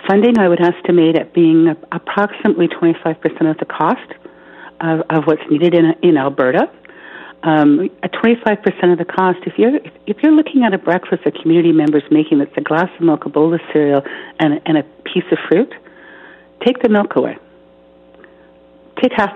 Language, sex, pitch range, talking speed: English, female, 145-185 Hz, 185 wpm